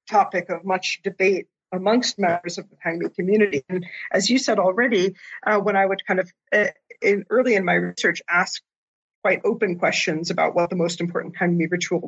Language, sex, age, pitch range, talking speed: English, female, 40-59, 175-215 Hz, 190 wpm